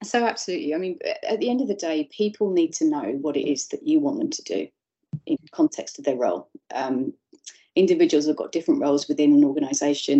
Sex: female